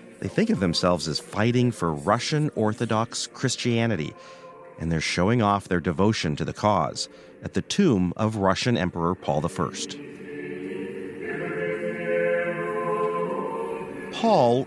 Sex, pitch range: male, 90-130 Hz